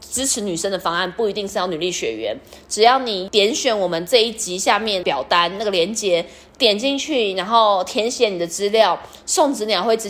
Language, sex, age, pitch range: Chinese, female, 20-39, 185-235 Hz